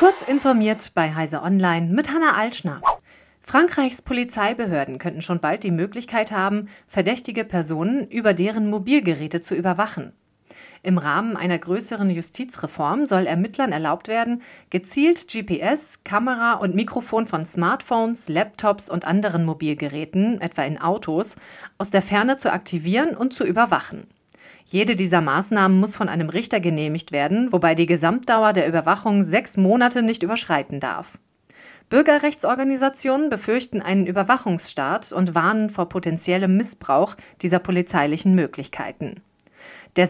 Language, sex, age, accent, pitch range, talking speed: German, female, 40-59, German, 175-230 Hz, 130 wpm